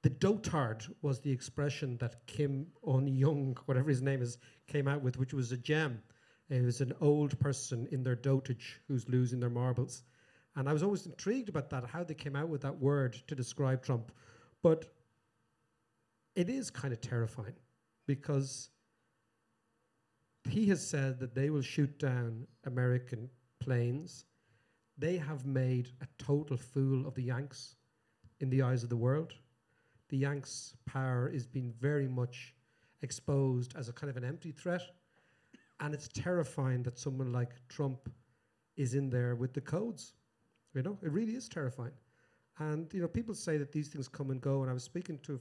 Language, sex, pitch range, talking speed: English, male, 125-145 Hz, 175 wpm